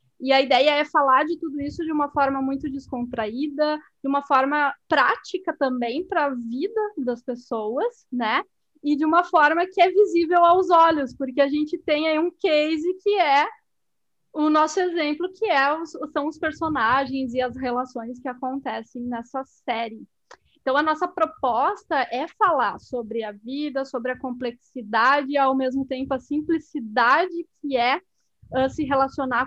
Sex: female